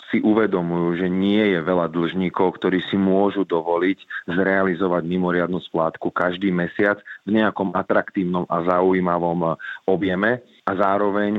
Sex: male